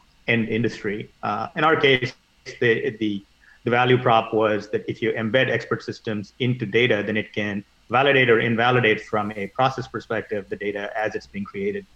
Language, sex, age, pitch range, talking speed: English, male, 30-49, 100-125 Hz, 175 wpm